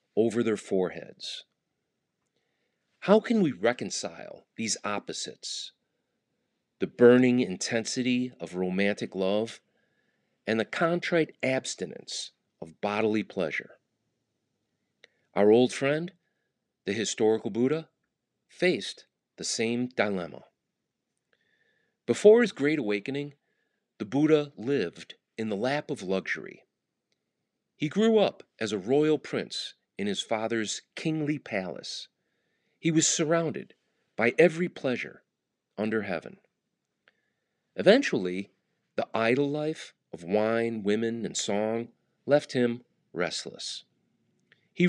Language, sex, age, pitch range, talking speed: English, male, 40-59, 110-160 Hz, 105 wpm